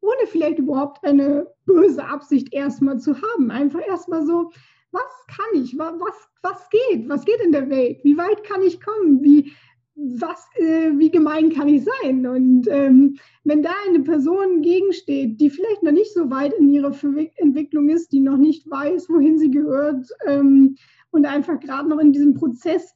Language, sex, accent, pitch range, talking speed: German, female, German, 285-355 Hz, 180 wpm